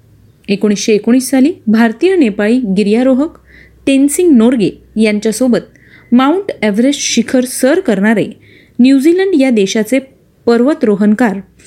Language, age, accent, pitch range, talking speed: Marathi, 20-39, native, 210-265 Hz, 95 wpm